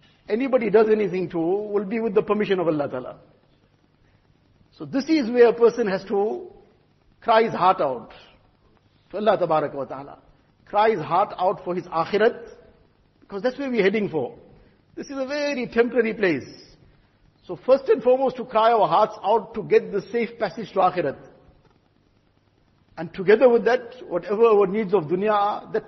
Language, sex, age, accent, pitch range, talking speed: English, male, 50-69, Indian, 165-220 Hz, 170 wpm